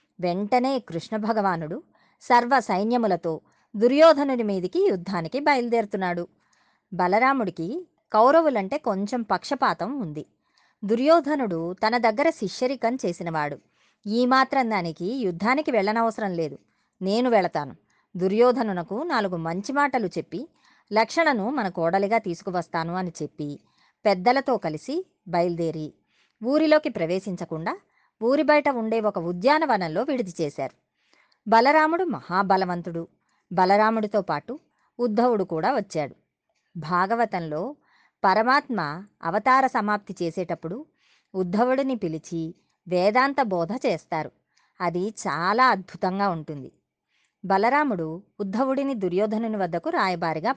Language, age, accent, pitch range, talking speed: Telugu, 30-49, native, 175-255 Hz, 90 wpm